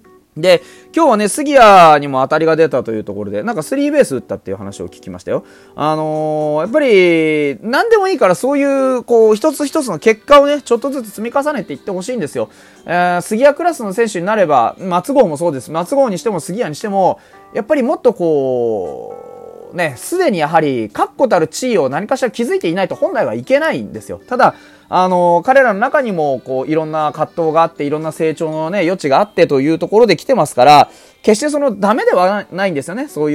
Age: 20-39